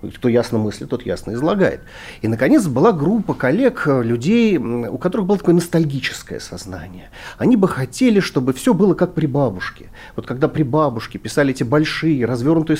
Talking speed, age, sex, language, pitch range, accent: 165 wpm, 40-59, male, Russian, 120-165 Hz, native